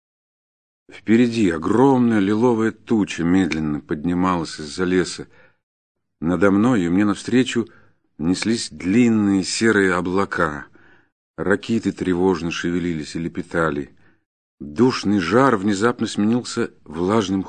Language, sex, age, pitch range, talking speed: Russian, male, 50-69, 100-125 Hz, 95 wpm